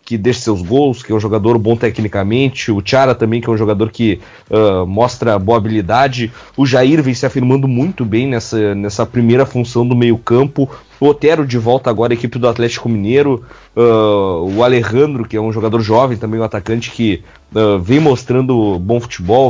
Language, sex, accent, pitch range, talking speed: Portuguese, male, Brazilian, 115-135 Hz, 190 wpm